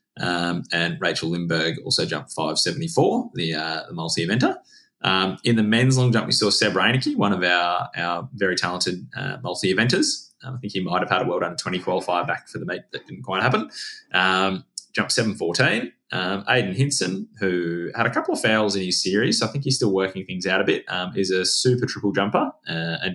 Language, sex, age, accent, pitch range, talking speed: English, male, 20-39, Australian, 85-110 Hz, 210 wpm